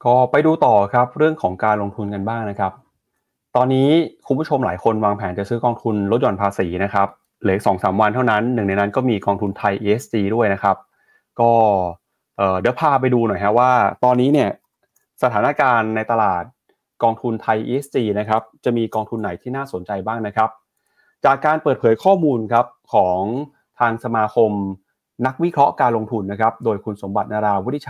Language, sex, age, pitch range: Thai, male, 20-39, 105-125 Hz